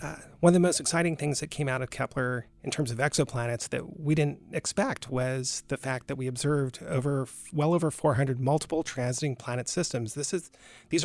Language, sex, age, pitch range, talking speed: English, male, 40-59, 130-155 Hz, 200 wpm